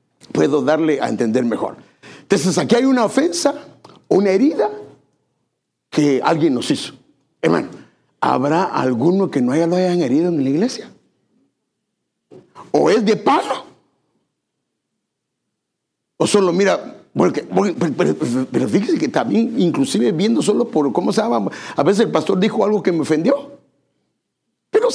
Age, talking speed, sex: 60-79, 150 wpm, male